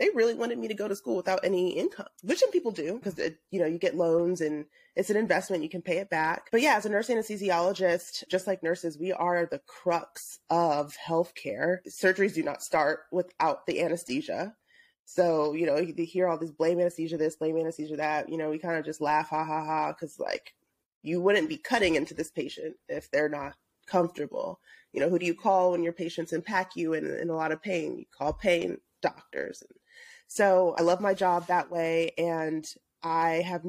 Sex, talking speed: female, 210 wpm